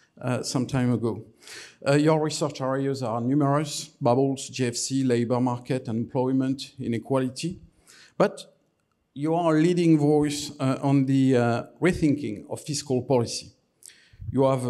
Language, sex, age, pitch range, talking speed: English, male, 50-69, 125-155 Hz, 130 wpm